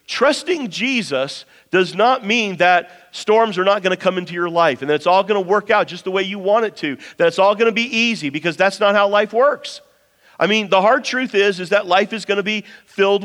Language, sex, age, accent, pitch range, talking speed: English, male, 40-59, American, 180-235 Hz, 260 wpm